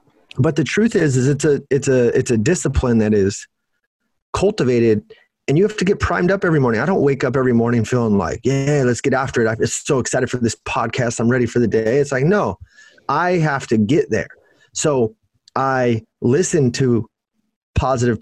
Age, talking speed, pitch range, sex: 30-49, 200 wpm, 115-150 Hz, male